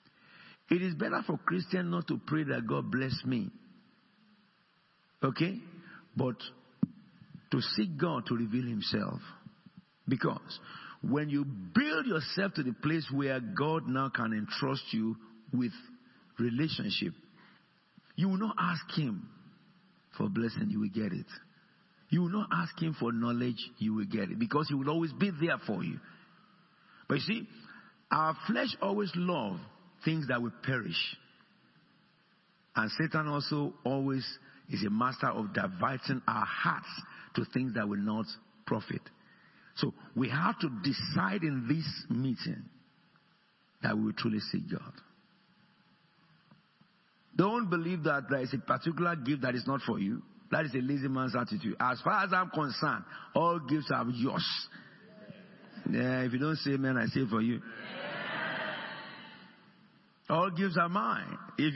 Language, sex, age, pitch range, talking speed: English, male, 50-69, 135-195 Hz, 145 wpm